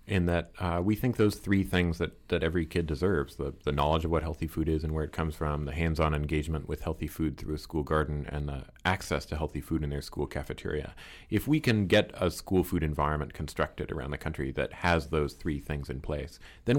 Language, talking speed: English, 235 wpm